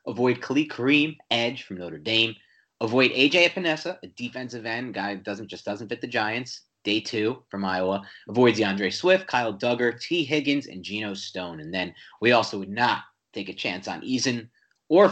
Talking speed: 185 wpm